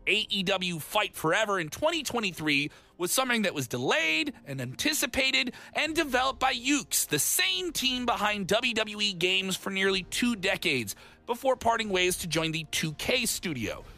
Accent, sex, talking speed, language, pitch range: American, male, 145 wpm, English, 200-325 Hz